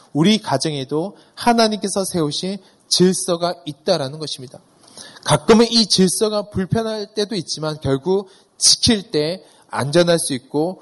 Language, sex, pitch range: Korean, male, 135-185 Hz